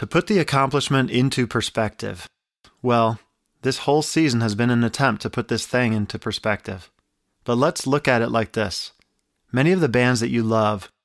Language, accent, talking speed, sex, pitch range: English, American, 185 wpm, male, 110-125 Hz